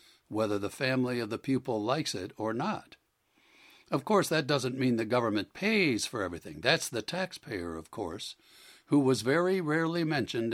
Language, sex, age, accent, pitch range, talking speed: English, male, 60-79, American, 115-145 Hz, 170 wpm